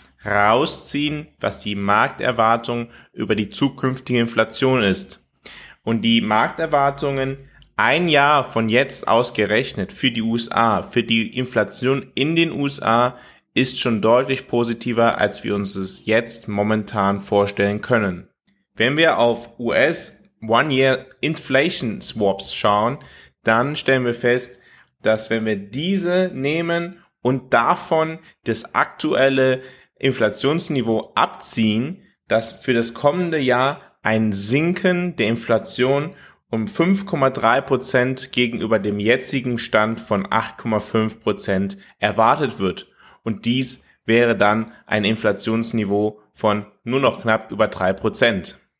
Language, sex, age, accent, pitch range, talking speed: German, male, 20-39, German, 110-135 Hz, 115 wpm